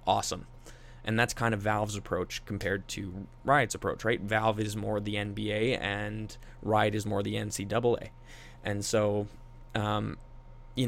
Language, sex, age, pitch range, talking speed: English, male, 20-39, 105-115 Hz, 150 wpm